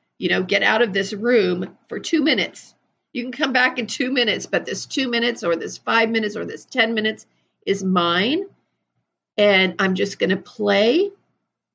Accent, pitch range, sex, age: American, 175-225 Hz, female, 40-59